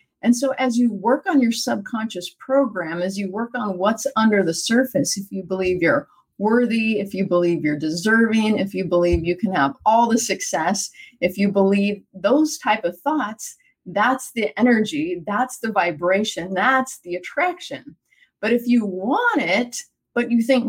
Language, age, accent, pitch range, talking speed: English, 30-49, American, 195-265 Hz, 175 wpm